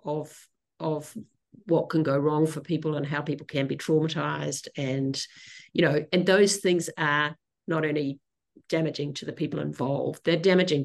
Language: English